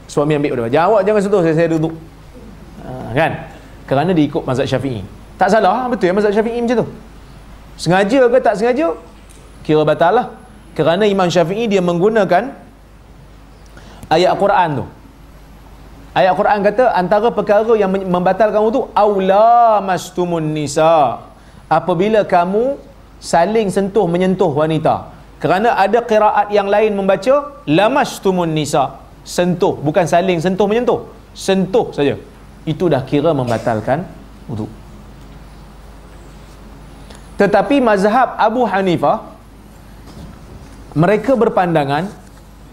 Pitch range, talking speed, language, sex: 155-210 Hz, 120 wpm, Malayalam, male